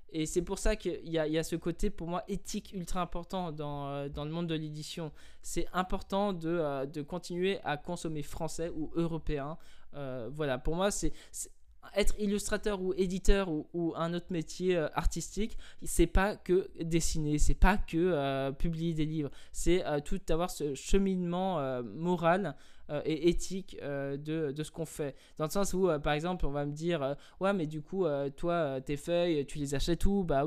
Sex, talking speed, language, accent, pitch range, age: male, 190 wpm, French, French, 145-180 Hz, 20-39